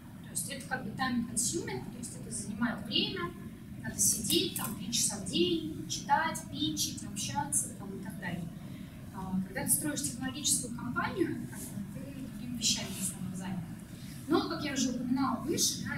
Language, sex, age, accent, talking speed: Russian, female, 20-39, native, 175 wpm